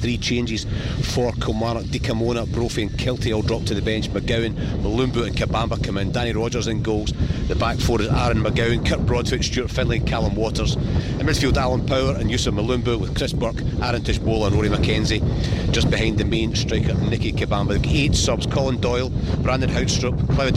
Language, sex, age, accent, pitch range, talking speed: English, male, 40-59, British, 105-120 Hz, 190 wpm